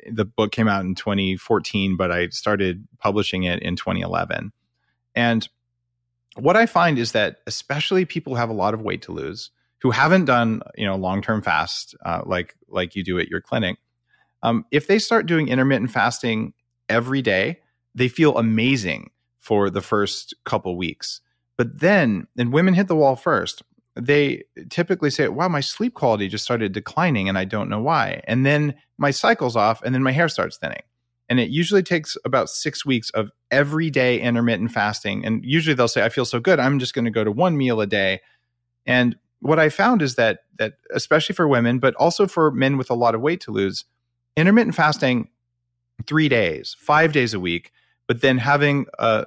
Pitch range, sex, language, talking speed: 110-145 Hz, male, English, 190 wpm